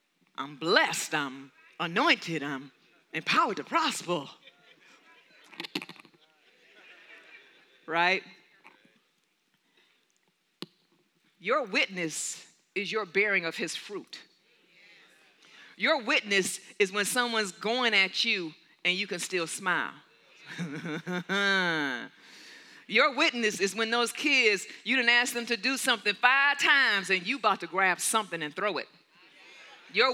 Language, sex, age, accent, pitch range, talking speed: English, female, 40-59, American, 175-245 Hz, 110 wpm